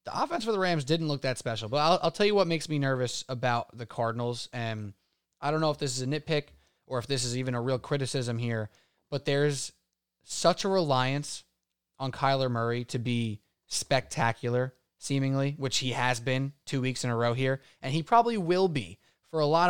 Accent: American